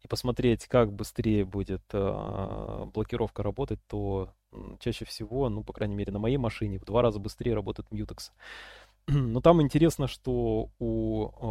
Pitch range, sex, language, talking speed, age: 105-125 Hz, male, Russian, 145 wpm, 20-39